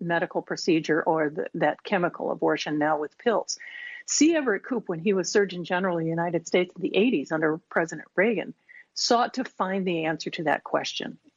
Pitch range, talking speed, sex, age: 170-230 Hz, 190 wpm, female, 50-69